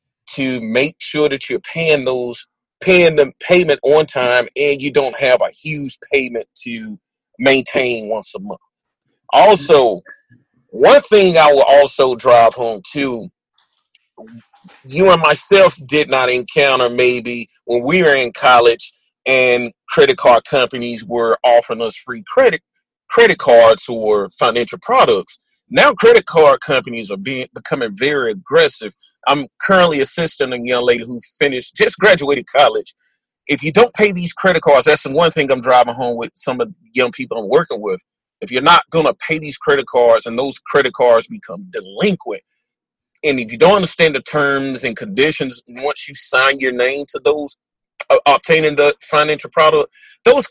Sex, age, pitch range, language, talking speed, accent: male, 40-59, 125-185 Hz, English, 165 wpm, American